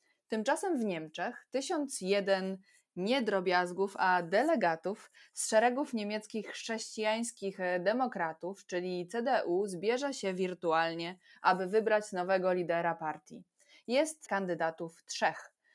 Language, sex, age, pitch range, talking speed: Polish, female, 20-39, 180-220 Hz, 100 wpm